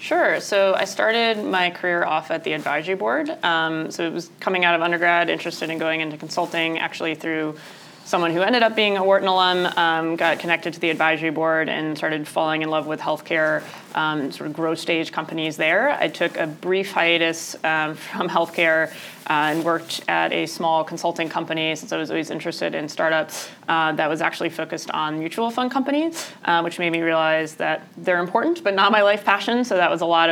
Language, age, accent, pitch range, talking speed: English, 20-39, American, 155-175 Hz, 210 wpm